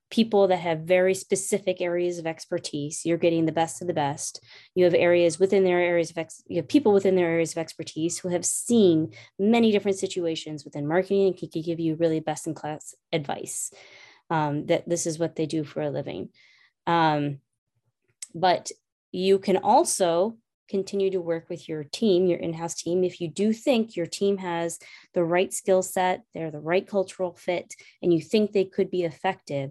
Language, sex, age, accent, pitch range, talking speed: English, female, 20-39, American, 160-195 Hz, 190 wpm